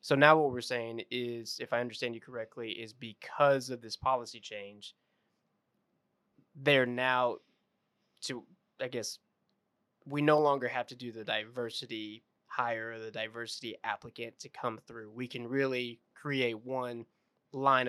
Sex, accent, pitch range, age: male, American, 115-135 Hz, 20-39